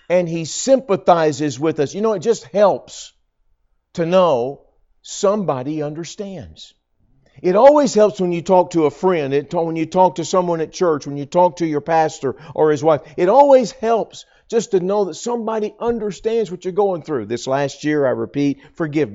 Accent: American